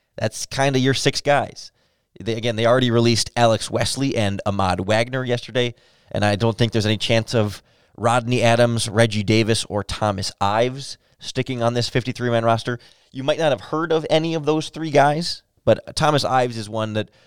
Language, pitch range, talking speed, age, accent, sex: English, 105-130 Hz, 190 wpm, 20-39, American, male